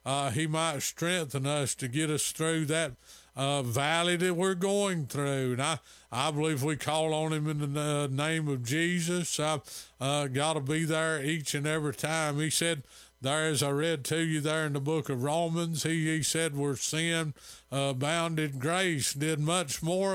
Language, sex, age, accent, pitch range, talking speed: English, male, 50-69, American, 140-160 Hz, 195 wpm